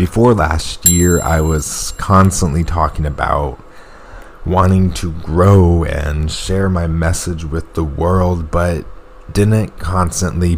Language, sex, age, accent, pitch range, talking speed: English, male, 20-39, American, 80-90 Hz, 120 wpm